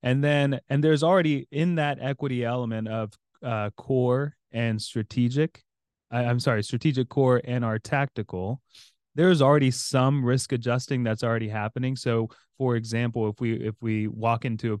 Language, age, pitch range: English, 20-39, 110-125 Hz